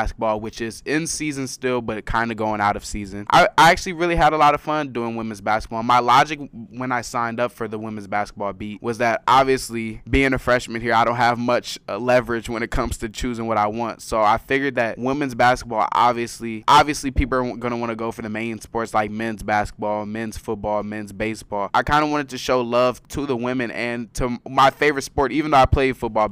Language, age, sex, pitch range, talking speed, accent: English, 20-39, male, 110-125 Hz, 230 wpm, American